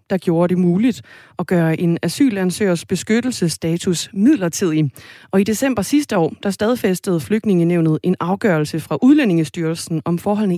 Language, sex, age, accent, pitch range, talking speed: Danish, female, 30-49, native, 165-225 Hz, 135 wpm